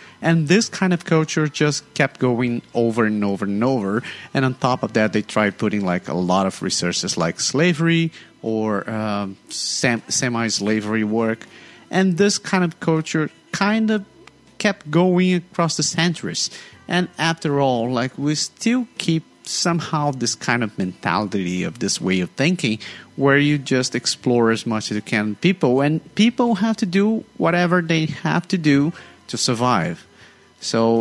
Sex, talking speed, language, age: male, 165 wpm, English, 30-49